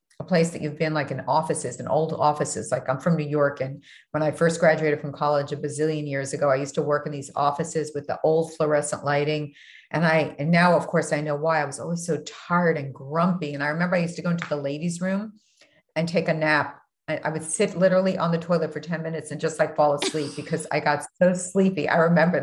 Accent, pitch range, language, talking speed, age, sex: American, 145-165 Hz, English, 250 wpm, 50-69, female